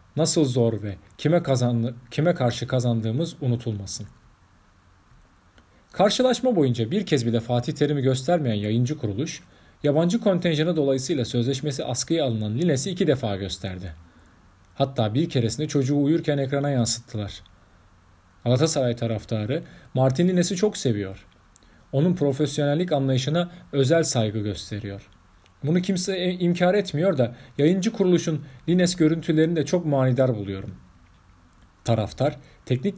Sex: male